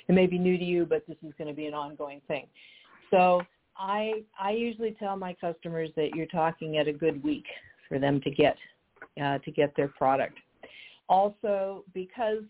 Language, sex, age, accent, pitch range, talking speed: English, female, 50-69, American, 150-185 Hz, 190 wpm